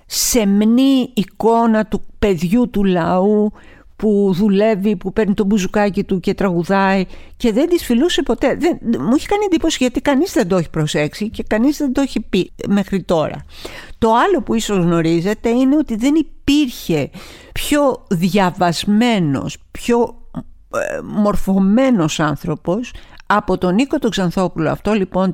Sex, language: female, Greek